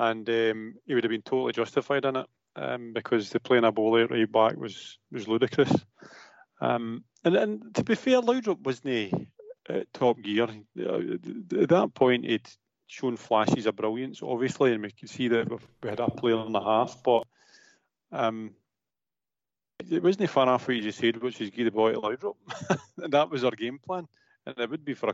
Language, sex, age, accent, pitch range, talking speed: English, male, 30-49, British, 110-135 Hz, 195 wpm